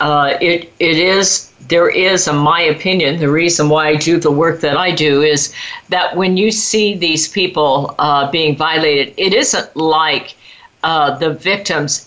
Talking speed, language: 175 wpm, English